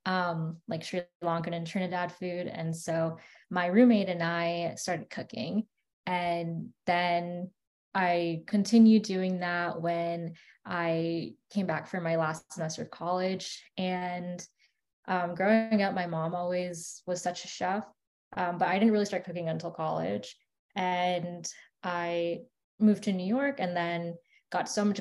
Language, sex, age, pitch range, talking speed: English, female, 20-39, 175-205 Hz, 150 wpm